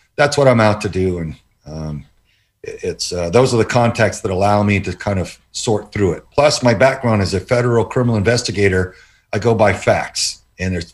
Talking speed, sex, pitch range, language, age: 205 wpm, male, 115-155 Hz, English, 50-69